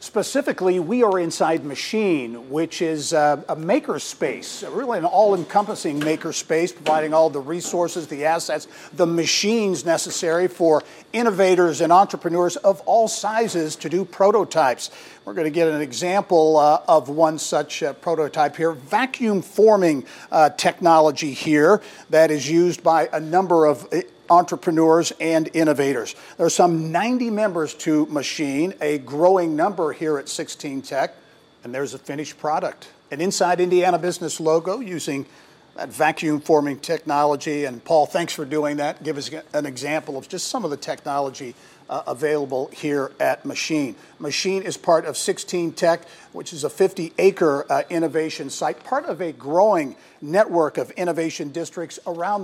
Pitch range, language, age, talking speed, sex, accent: 150-180 Hz, English, 50-69, 150 wpm, male, American